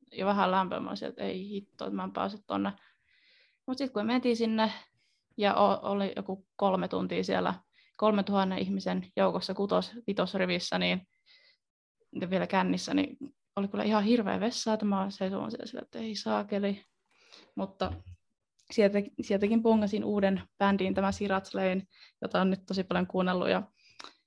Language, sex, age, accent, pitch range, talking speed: Finnish, female, 20-39, native, 185-215 Hz, 145 wpm